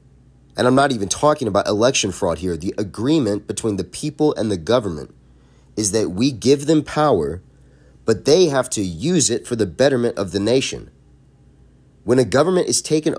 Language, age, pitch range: English, 30-49, 80-125 Hz